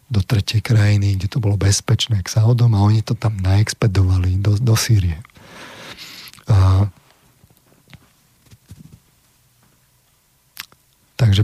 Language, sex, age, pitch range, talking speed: Slovak, male, 40-59, 100-120 Hz, 100 wpm